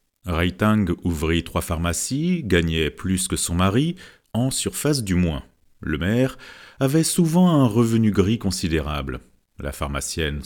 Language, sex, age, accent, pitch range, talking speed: French, male, 40-59, French, 80-125 Hz, 130 wpm